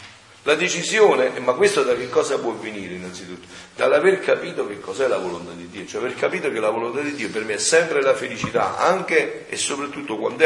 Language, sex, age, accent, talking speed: Italian, male, 40-59, native, 205 wpm